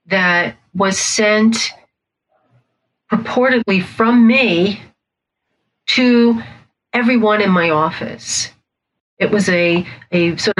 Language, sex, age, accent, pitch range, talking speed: English, female, 40-59, American, 175-210 Hz, 90 wpm